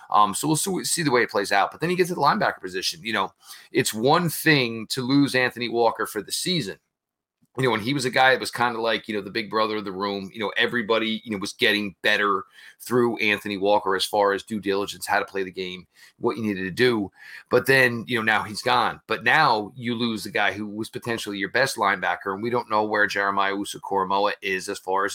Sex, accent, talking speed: male, American, 250 wpm